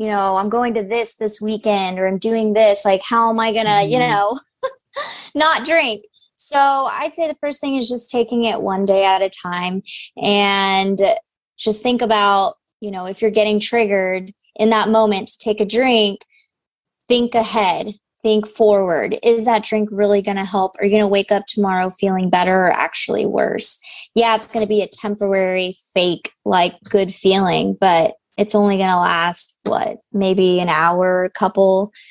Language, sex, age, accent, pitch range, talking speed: English, female, 20-39, American, 190-225 Hz, 180 wpm